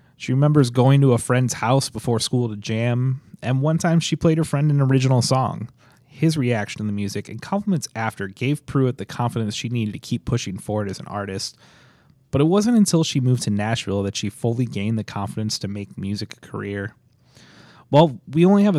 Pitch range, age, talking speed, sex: 105-140 Hz, 30-49, 210 wpm, male